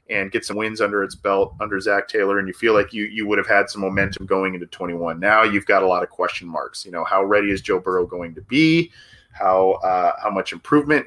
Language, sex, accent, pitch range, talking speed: English, male, American, 100-140 Hz, 255 wpm